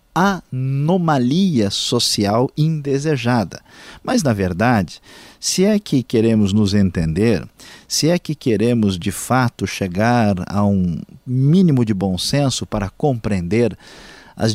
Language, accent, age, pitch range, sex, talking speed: Portuguese, Brazilian, 50-69, 105-145 Hz, male, 115 wpm